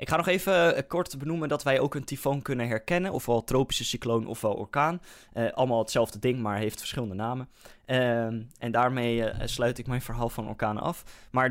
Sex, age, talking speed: male, 10-29, 200 wpm